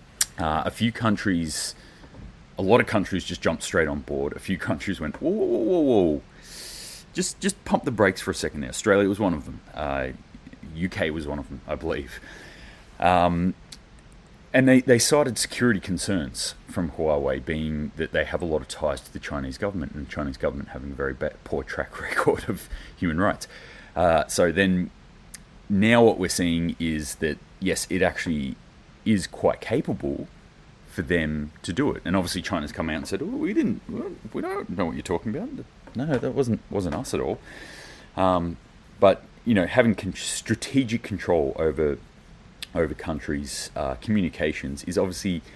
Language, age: English, 30-49